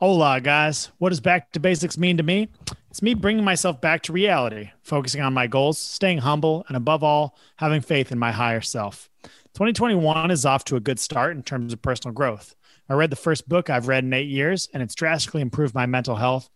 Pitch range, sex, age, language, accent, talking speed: 125-165 Hz, male, 30-49, English, American, 220 wpm